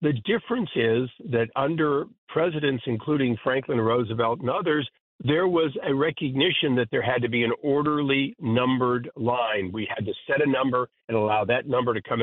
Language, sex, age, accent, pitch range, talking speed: English, male, 50-69, American, 115-140 Hz, 175 wpm